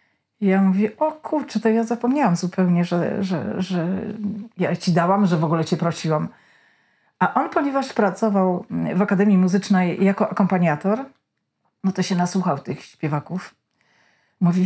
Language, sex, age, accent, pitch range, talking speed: Polish, female, 40-59, native, 180-230 Hz, 145 wpm